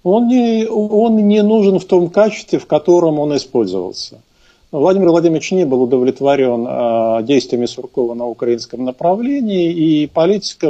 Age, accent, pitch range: 50-69, native, 125-180 Hz